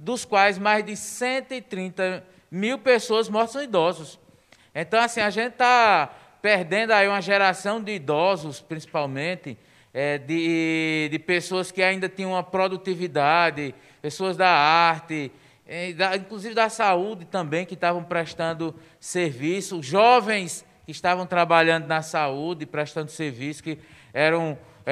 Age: 20-39